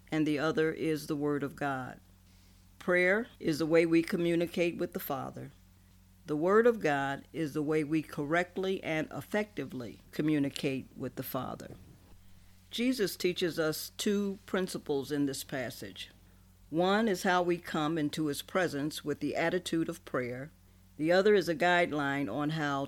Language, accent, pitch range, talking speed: English, American, 135-180 Hz, 155 wpm